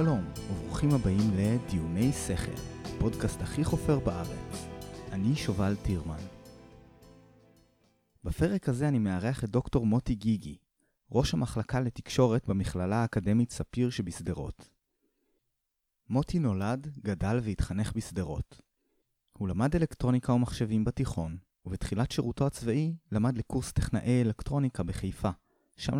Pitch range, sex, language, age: 95-125 Hz, male, Hebrew, 30-49